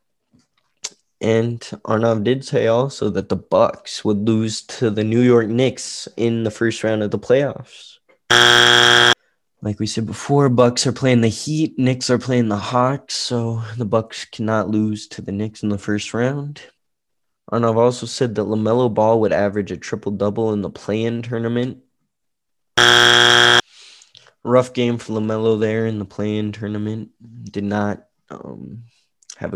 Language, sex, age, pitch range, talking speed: English, male, 20-39, 105-120 Hz, 150 wpm